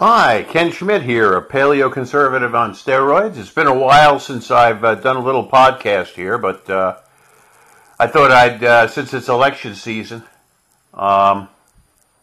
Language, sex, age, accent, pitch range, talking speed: English, male, 50-69, American, 105-140 Hz, 150 wpm